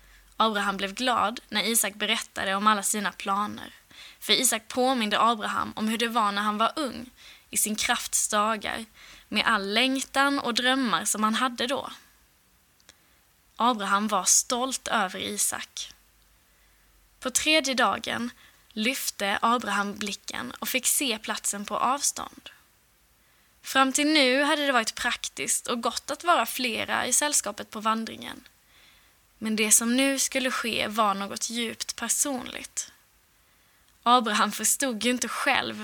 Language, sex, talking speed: Swedish, female, 135 wpm